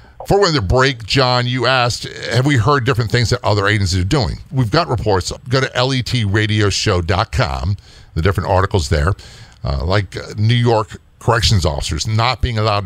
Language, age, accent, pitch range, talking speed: English, 50-69, American, 90-115 Hz, 175 wpm